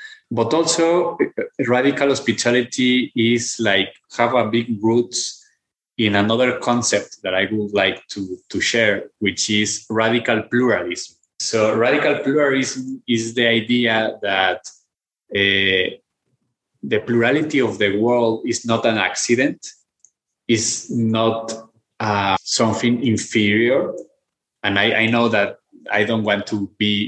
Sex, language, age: male, English, 20-39